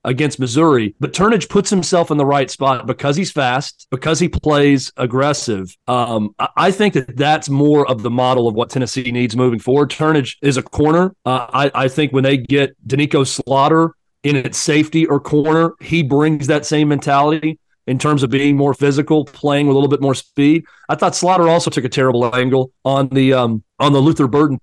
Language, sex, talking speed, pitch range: English, male, 200 wpm, 130-160 Hz